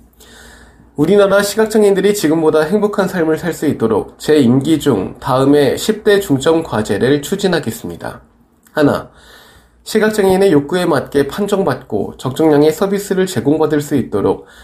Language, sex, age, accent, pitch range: Korean, male, 20-39, native, 135-185 Hz